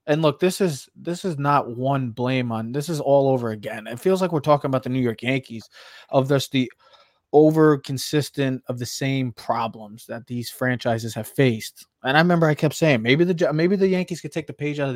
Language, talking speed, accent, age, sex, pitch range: English, 225 wpm, American, 20-39, male, 125-155 Hz